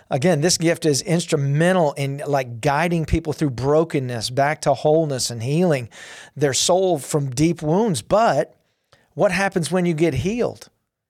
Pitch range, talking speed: 140-180 Hz, 150 wpm